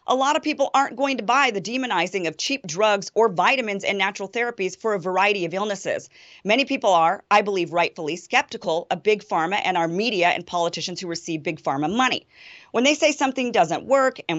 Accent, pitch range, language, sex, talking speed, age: American, 165-225 Hz, English, female, 210 wpm, 40-59